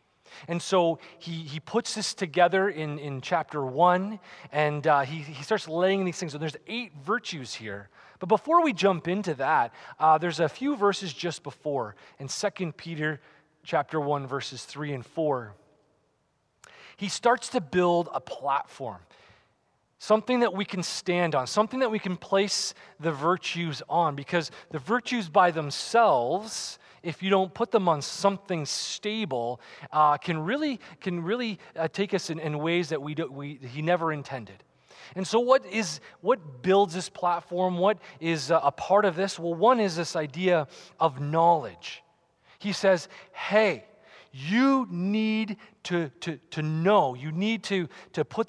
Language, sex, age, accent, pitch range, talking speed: English, male, 30-49, American, 155-200 Hz, 165 wpm